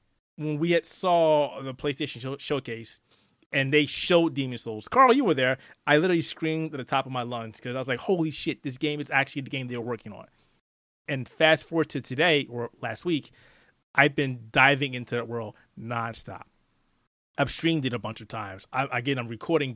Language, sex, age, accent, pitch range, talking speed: English, male, 30-49, American, 120-145 Hz, 205 wpm